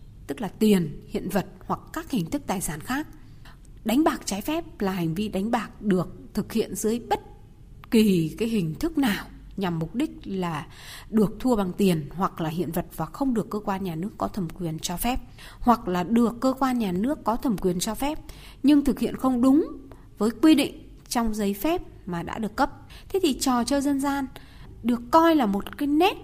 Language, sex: Vietnamese, female